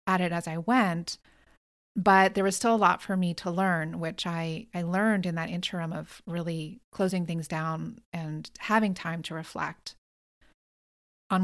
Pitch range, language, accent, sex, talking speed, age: 170-210 Hz, English, American, female, 175 wpm, 30-49